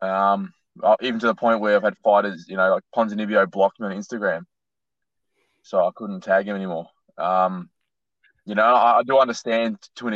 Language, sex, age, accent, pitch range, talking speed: English, male, 20-39, Australian, 100-110 Hz, 190 wpm